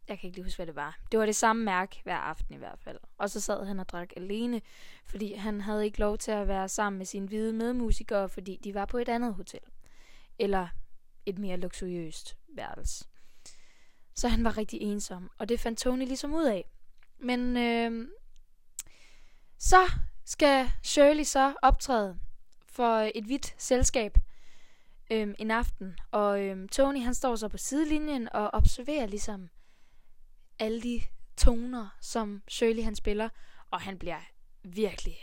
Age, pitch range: 10-29, 205-250 Hz